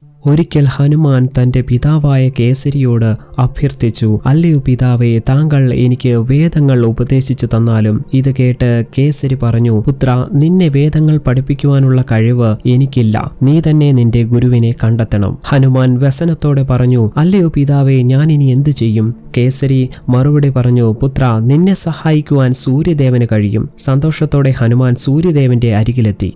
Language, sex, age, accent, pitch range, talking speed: Malayalam, male, 20-39, native, 120-140 Hz, 110 wpm